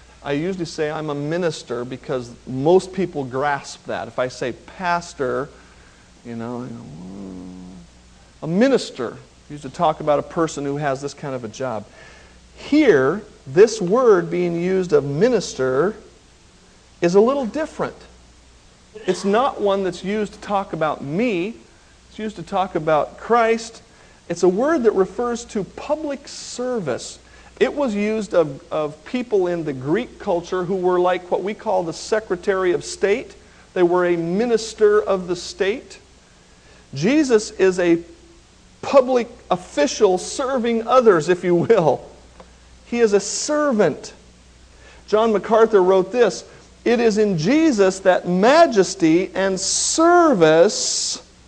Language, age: English, 50-69